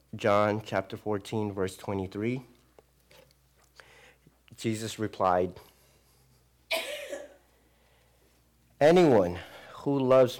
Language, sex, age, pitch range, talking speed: English, male, 50-69, 95-120 Hz, 60 wpm